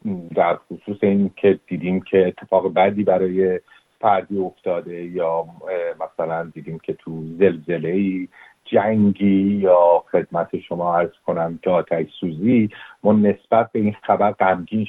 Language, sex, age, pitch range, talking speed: Persian, male, 50-69, 95-115 Hz, 130 wpm